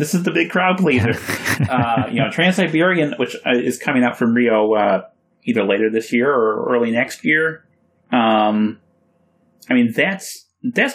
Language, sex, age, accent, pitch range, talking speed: English, male, 30-49, American, 110-160 Hz, 170 wpm